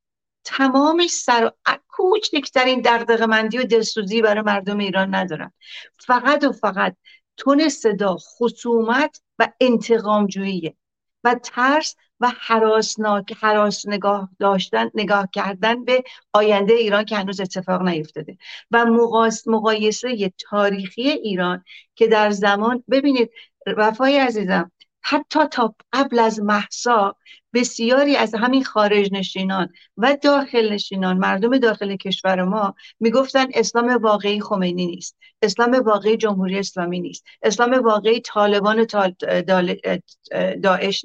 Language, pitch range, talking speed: Persian, 205-250 Hz, 115 wpm